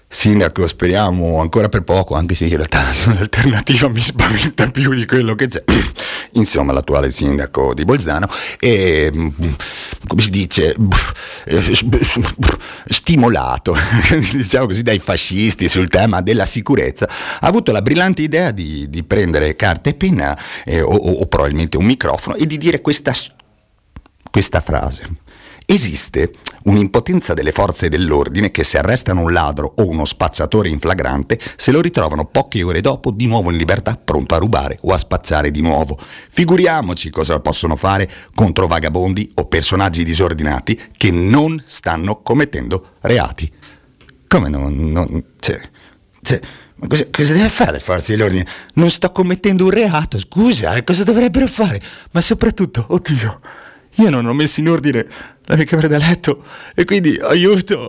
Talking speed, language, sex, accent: 150 wpm, Italian, male, native